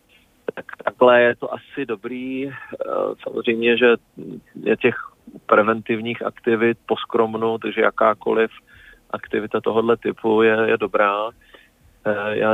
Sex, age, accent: male, 40-59, native